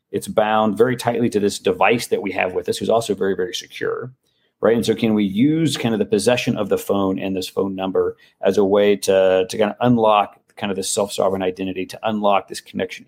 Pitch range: 100-125 Hz